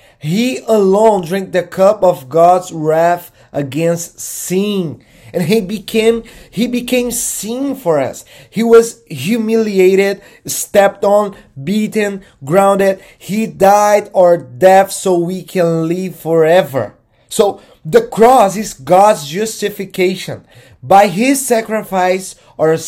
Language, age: English, 30-49